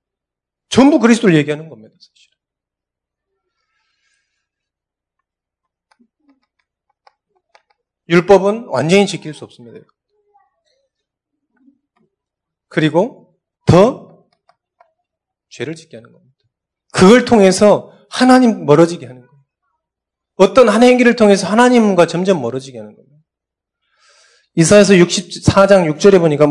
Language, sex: Korean, male